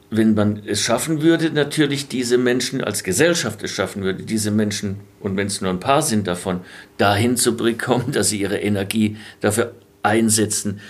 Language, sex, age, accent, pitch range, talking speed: German, male, 50-69, German, 100-120 Hz, 175 wpm